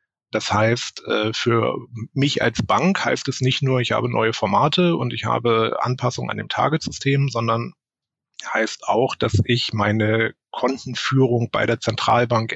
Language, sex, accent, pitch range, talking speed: German, male, German, 110-135 Hz, 150 wpm